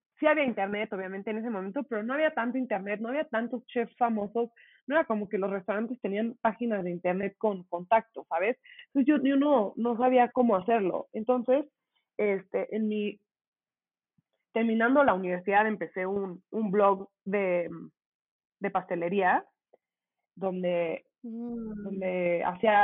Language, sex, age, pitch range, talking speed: Spanish, female, 20-39, 185-240 Hz, 145 wpm